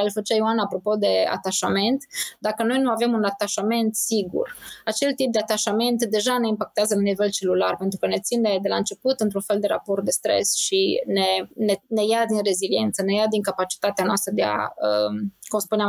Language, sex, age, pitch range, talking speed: Romanian, female, 20-39, 205-255 Hz, 195 wpm